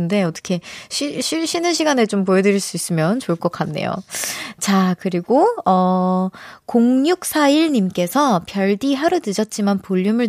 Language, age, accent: Korean, 20-39, native